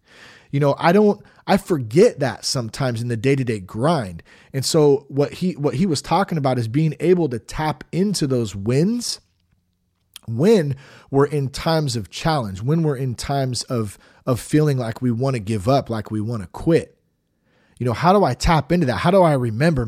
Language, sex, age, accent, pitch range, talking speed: English, male, 30-49, American, 110-155 Hz, 195 wpm